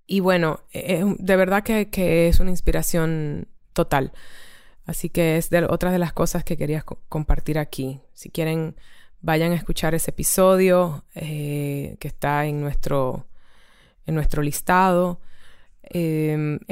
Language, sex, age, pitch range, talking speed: Spanish, female, 20-39, 150-180 Hz, 135 wpm